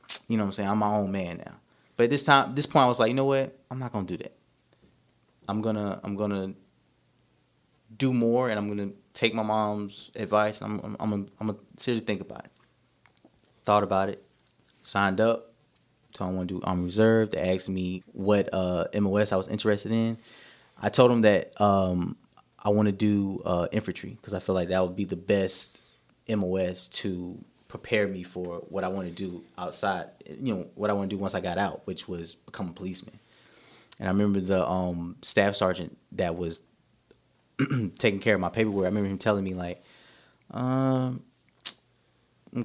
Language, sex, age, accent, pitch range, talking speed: English, male, 20-39, American, 95-110 Hz, 195 wpm